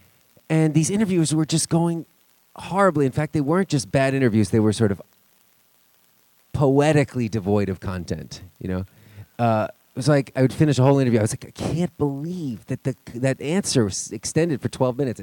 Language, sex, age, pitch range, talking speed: English, male, 30-49, 100-140 Hz, 190 wpm